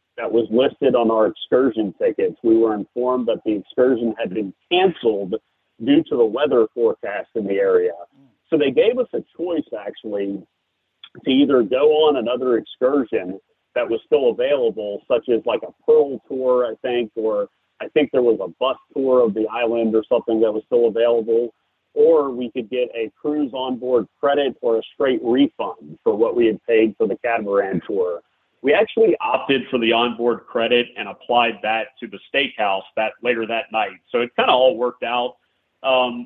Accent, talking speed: American, 185 wpm